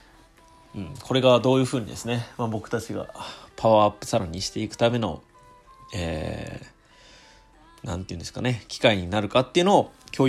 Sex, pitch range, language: male, 110-145 Hz, Japanese